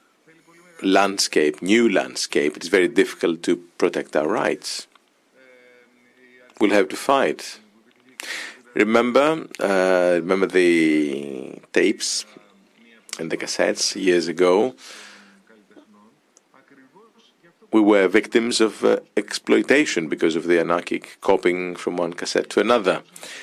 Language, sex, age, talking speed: Greek, male, 50-69, 100 wpm